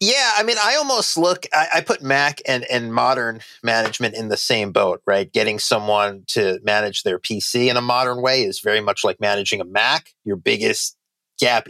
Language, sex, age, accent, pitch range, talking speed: English, male, 30-49, American, 105-155 Hz, 200 wpm